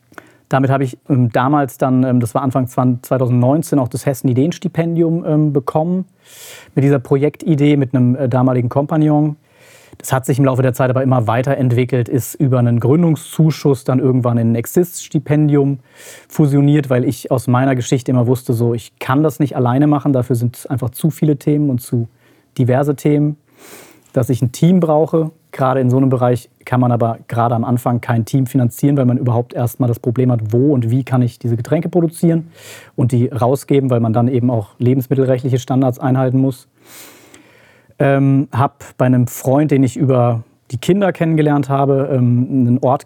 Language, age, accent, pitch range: German, 30-49, German, 125-145 Hz